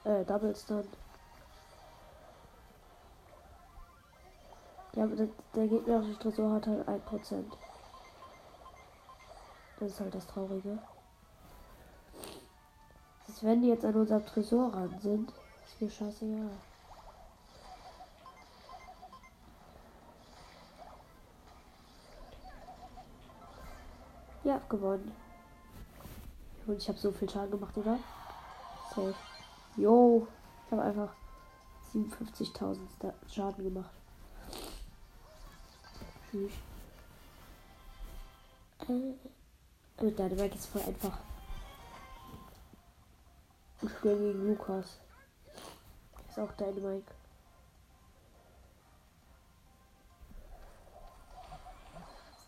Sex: female